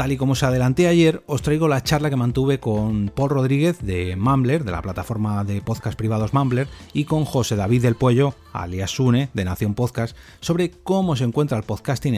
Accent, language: Spanish, Spanish